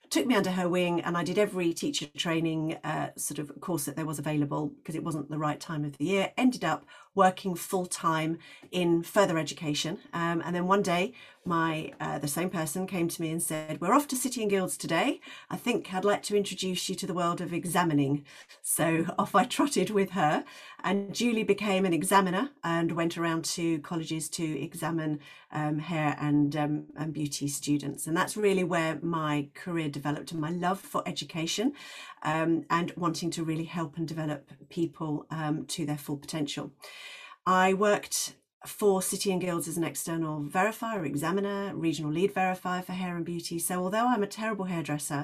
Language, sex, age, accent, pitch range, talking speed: English, female, 40-59, British, 155-185 Hz, 190 wpm